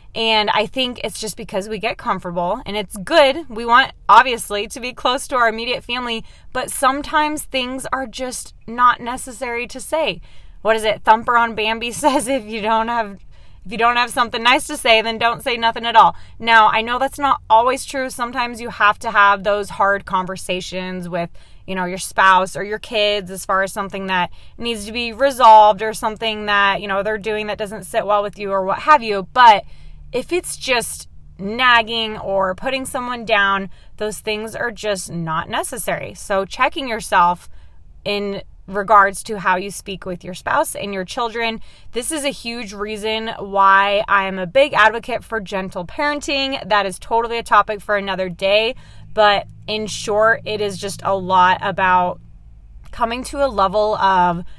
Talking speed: 190 wpm